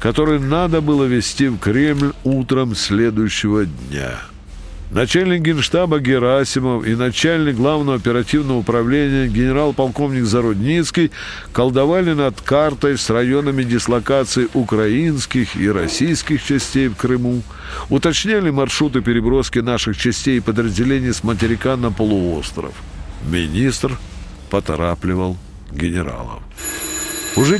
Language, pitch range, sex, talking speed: Russian, 100-145 Hz, male, 100 wpm